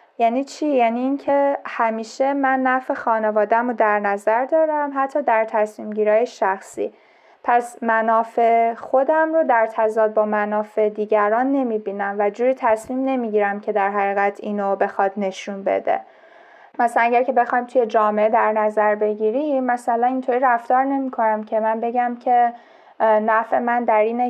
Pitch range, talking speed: 210-245 Hz, 150 wpm